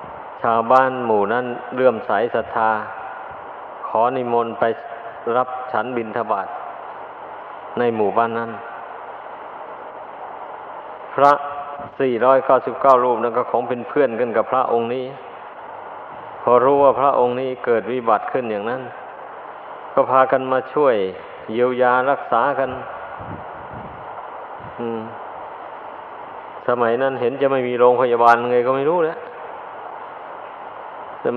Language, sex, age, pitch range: Thai, male, 20-39, 115-130 Hz